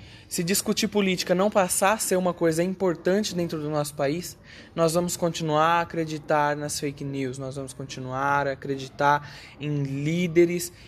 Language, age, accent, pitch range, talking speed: Portuguese, 20-39, Brazilian, 145-185 Hz, 160 wpm